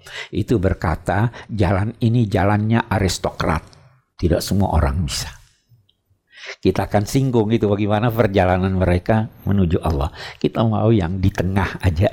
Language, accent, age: Indonesian, native, 60-79